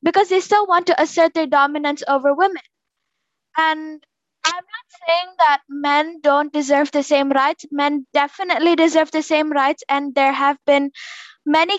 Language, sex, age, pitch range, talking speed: English, female, 20-39, 280-335 Hz, 165 wpm